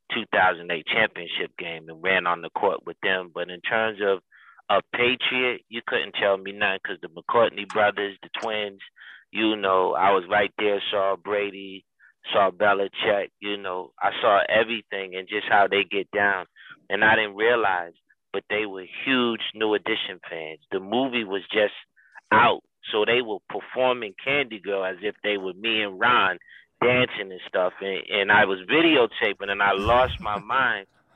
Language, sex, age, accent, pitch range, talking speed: English, male, 30-49, American, 95-115 Hz, 175 wpm